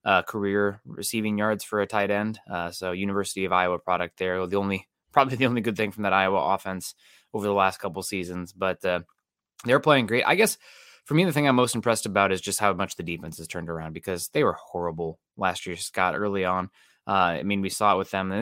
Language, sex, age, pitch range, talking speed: English, male, 20-39, 90-115 Hz, 240 wpm